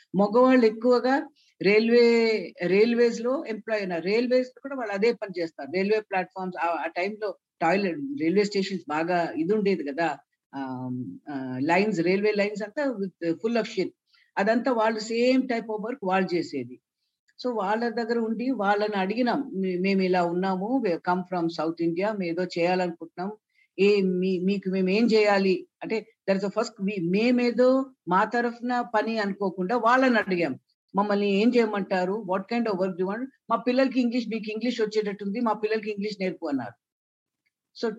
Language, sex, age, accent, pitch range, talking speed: Telugu, female, 50-69, native, 180-230 Hz, 140 wpm